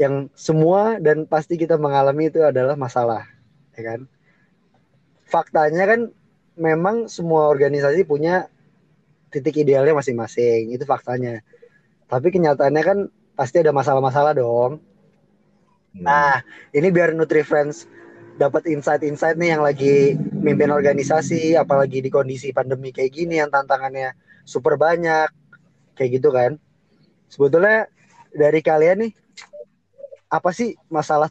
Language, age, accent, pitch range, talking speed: Indonesian, 20-39, native, 140-180 Hz, 115 wpm